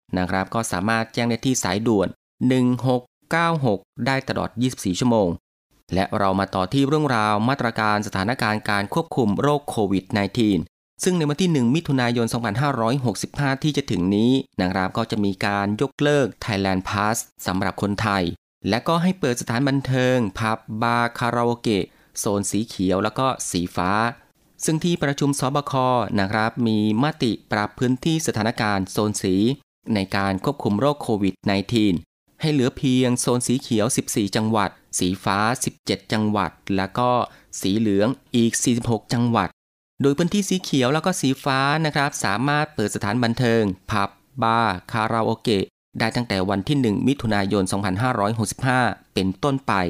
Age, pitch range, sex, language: 20-39, 100-130 Hz, male, Thai